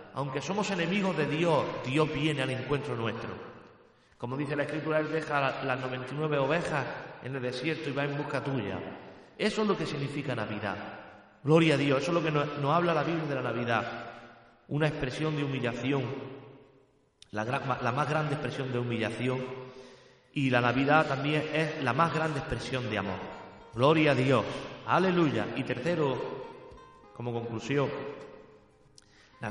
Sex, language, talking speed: male, Spanish, 160 wpm